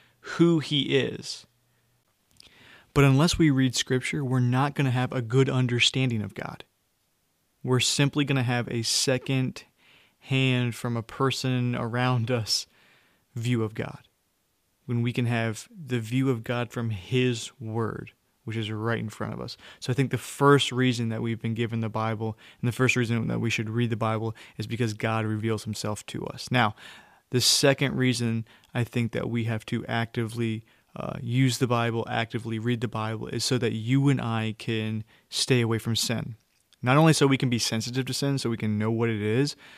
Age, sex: 20-39, male